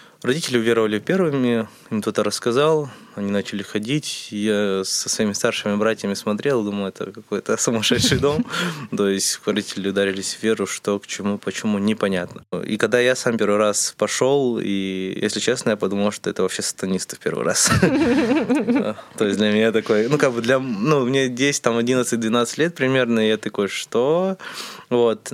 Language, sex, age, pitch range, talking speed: Russian, male, 20-39, 100-125 Hz, 160 wpm